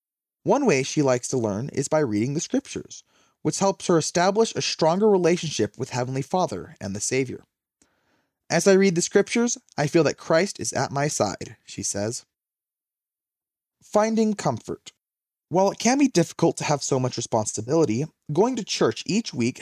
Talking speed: 170 wpm